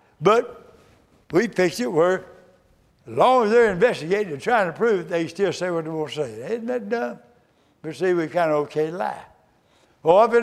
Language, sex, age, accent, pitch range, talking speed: English, male, 60-79, American, 150-205 Hz, 215 wpm